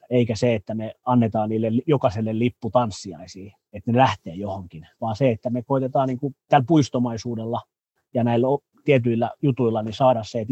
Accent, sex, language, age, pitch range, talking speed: native, male, Finnish, 30-49, 110-130 Hz, 155 wpm